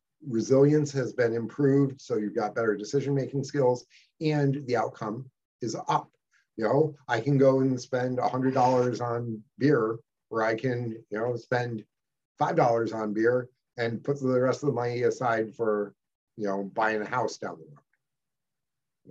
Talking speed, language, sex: 160 wpm, English, male